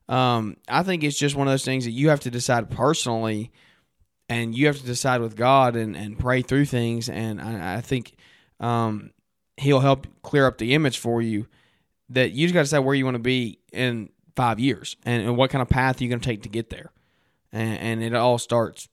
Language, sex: English, male